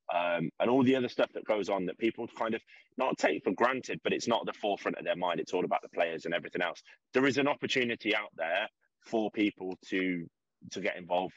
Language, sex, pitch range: English, male, 90-110 Hz